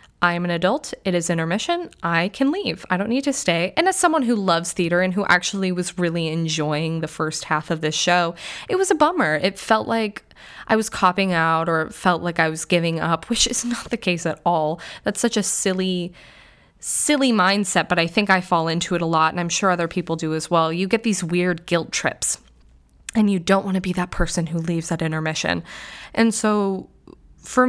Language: English